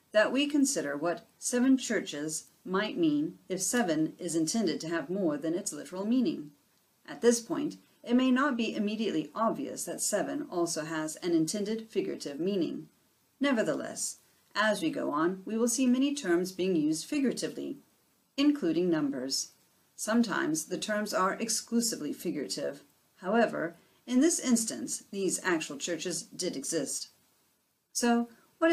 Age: 40-59